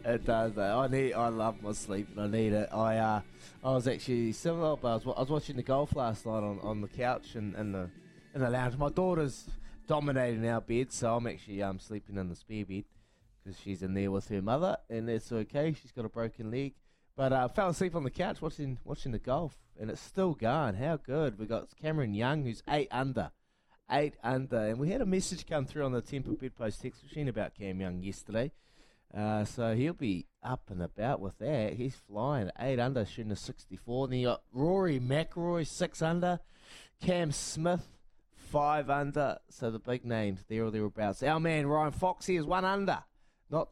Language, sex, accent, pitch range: English, male, Australian, 110-150 Hz